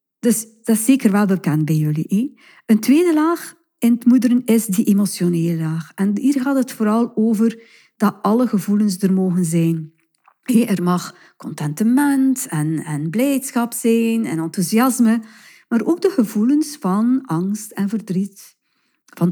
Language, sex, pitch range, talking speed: Dutch, female, 180-245 Hz, 150 wpm